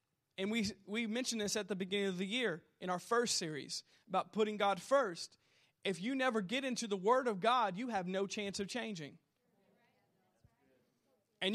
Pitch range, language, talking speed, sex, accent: 195-245 Hz, English, 180 wpm, male, American